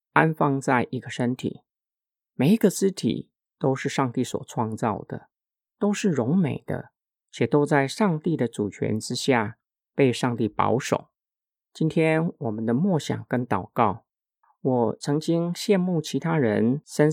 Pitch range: 125-170 Hz